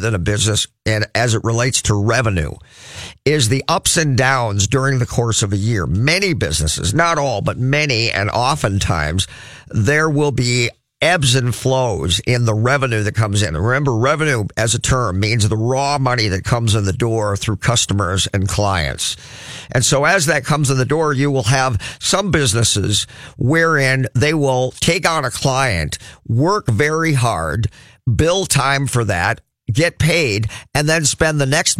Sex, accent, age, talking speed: male, American, 50-69, 175 wpm